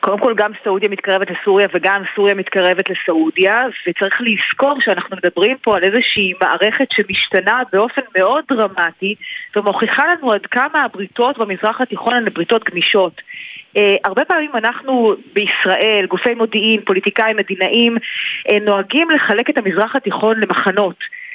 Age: 30-49